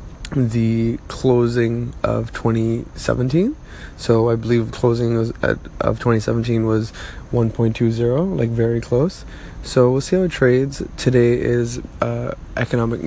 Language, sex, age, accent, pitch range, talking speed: English, male, 20-39, American, 115-125 Hz, 110 wpm